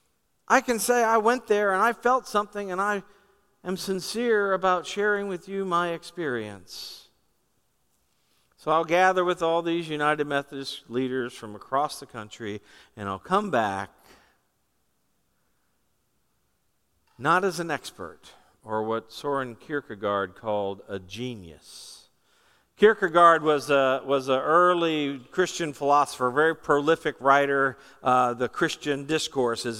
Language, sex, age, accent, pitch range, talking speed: English, male, 50-69, American, 135-200 Hz, 130 wpm